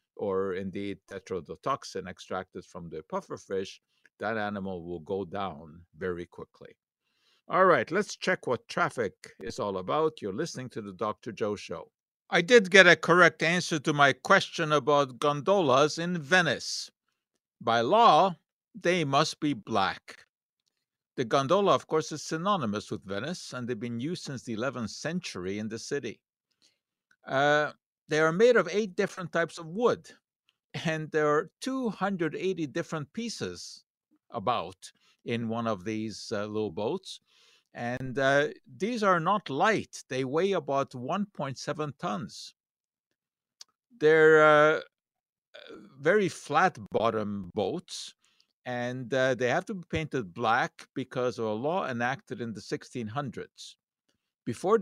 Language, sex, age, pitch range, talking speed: English, male, 50-69, 115-175 Hz, 140 wpm